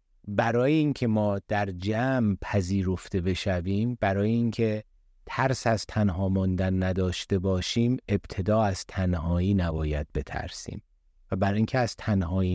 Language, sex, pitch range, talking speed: Persian, male, 90-110 Hz, 120 wpm